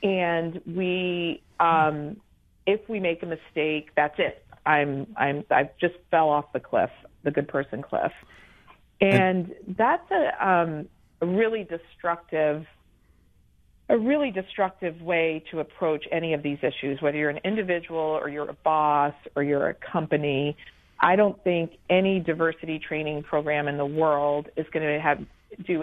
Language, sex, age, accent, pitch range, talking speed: English, female, 40-59, American, 150-185 Hz, 155 wpm